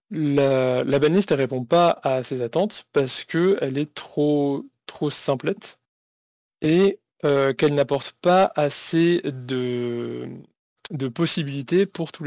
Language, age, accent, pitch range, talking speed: French, 20-39, French, 135-160 Hz, 125 wpm